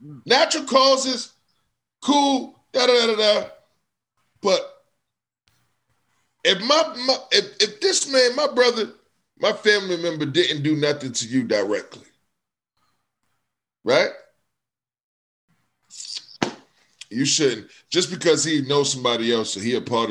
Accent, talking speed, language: American, 120 wpm, English